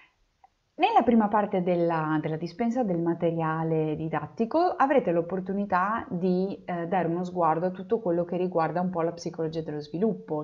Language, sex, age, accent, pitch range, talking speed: Italian, female, 30-49, native, 155-190 Hz, 155 wpm